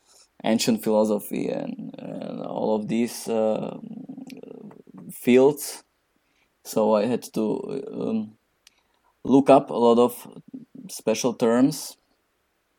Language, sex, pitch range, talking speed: English, male, 110-135 Hz, 100 wpm